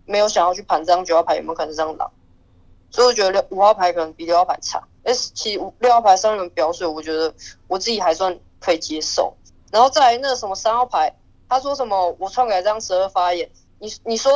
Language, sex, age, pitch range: Chinese, female, 20-39, 170-245 Hz